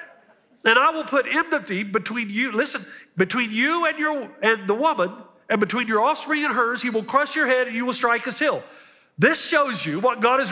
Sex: male